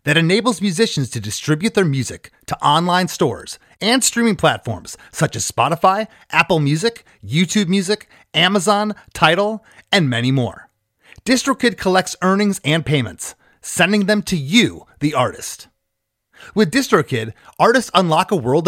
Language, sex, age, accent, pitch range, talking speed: English, male, 30-49, American, 140-210 Hz, 135 wpm